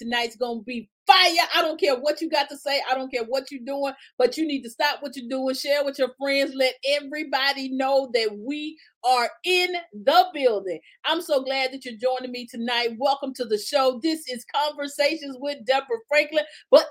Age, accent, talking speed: 40-59, American, 210 wpm